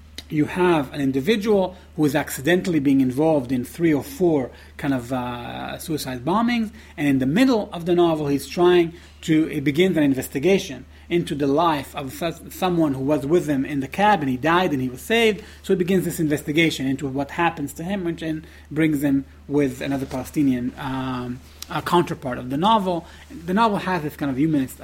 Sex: male